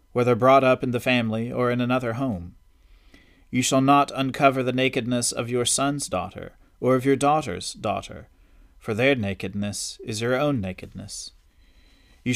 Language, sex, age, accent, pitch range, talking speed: English, male, 40-59, American, 100-135 Hz, 160 wpm